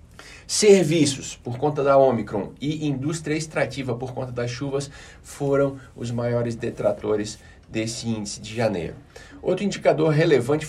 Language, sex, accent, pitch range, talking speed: Portuguese, male, Brazilian, 120-150 Hz, 130 wpm